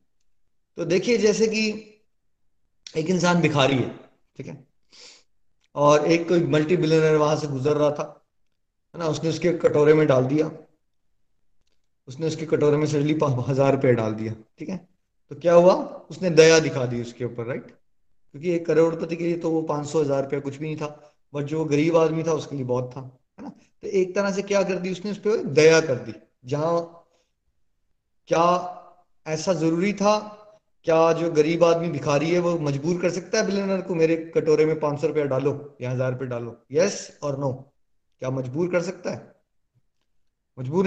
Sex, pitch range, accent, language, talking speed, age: male, 140-180 Hz, native, Hindi, 180 wpm, 20-39